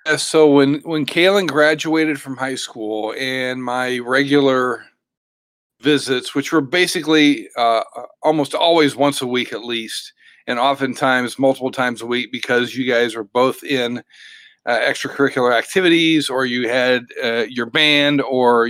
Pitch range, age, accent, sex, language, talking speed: 125-150 Hz, 40-59, American, male, English, 145 wpm